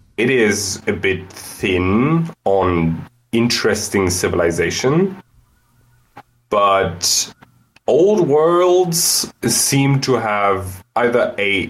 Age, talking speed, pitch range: 20-39, 80 wpm, 100-125 Hz